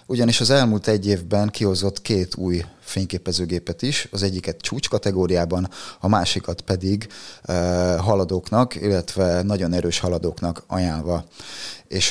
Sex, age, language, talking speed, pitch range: male, 30-49, Hungarian, 125 wpm, 90-110 Hz